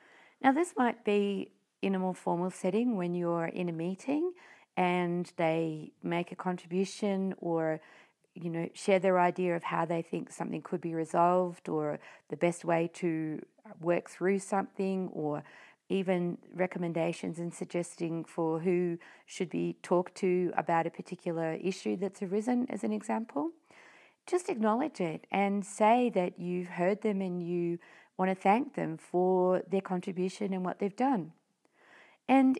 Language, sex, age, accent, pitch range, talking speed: English, female, 40-59, Australian, 170-220 Hz, 155 wpm